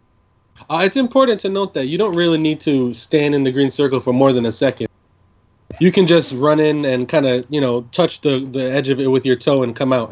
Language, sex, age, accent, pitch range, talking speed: English, male, 20-39, American, 115-155 Hz, 255 wpm